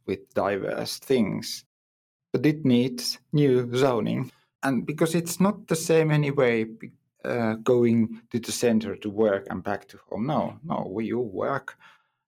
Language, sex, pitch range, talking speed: English, male, 115-150 Hz, 150 wpm